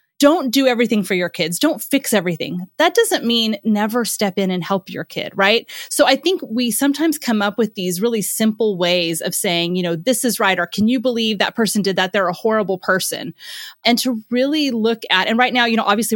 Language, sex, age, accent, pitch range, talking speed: English, female, 20-39, American, 185-245 Hz, 230 wpm